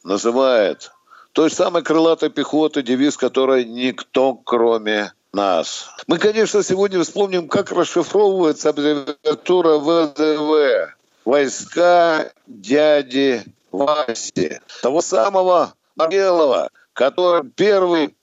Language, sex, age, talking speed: Russian, male, 60-79, 85 wpm